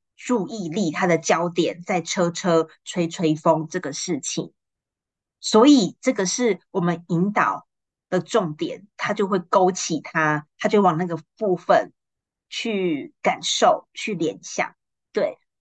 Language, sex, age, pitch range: Chinese, female, 20-39, 170-210 Hz